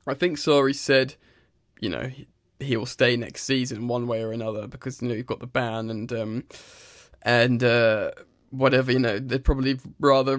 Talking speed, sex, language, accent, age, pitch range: 190 wpm, male, English, British, 10-29, 125-140 Hz